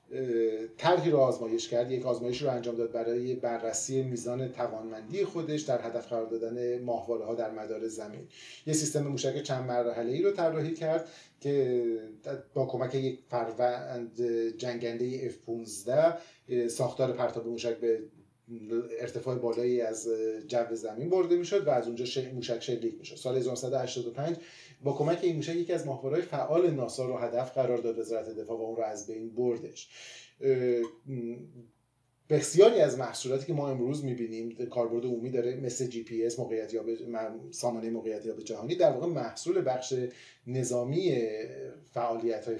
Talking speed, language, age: 145 wpm, Persian, 30-49